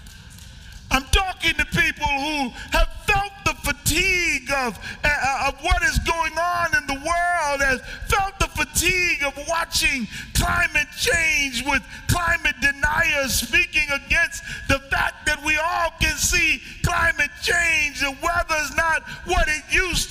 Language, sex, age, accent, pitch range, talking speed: English, male, 40-59, American, 235-330 Hz, 140 wpm